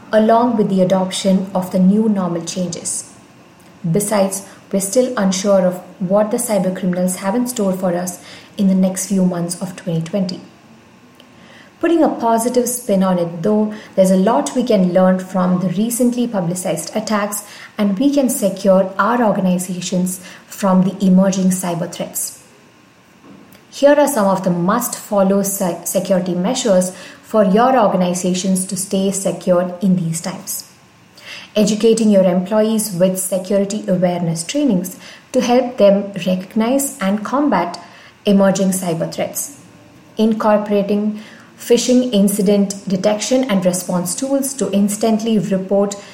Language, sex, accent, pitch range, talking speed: English, female, Indian, 185-215 Hz, 135 wpm